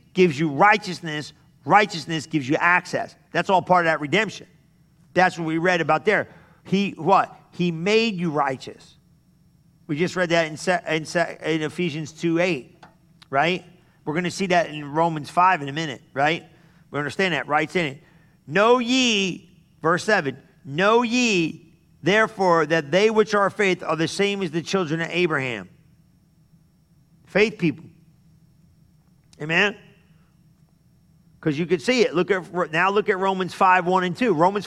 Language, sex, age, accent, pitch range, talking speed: English, male, 50-69, American, 160-185 Hz, 165 wpm